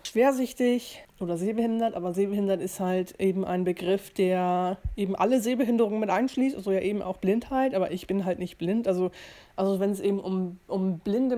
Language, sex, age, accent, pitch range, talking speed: English, female, 20-39, German, 185-205 Hz, 185 wpm